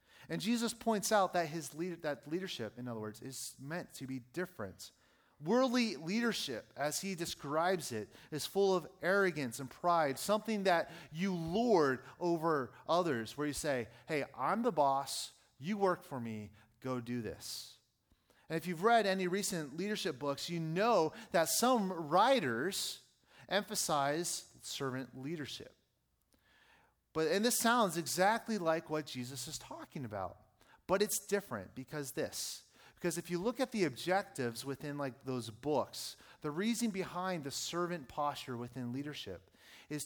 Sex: male